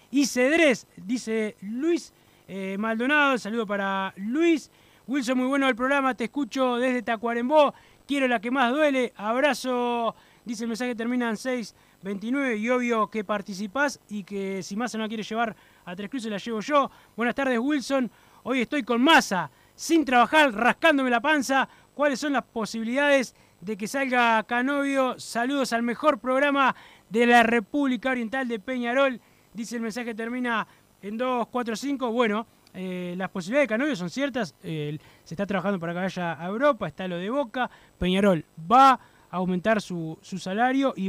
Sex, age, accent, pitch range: male, 20-39, Argentinian, 190-255 Hz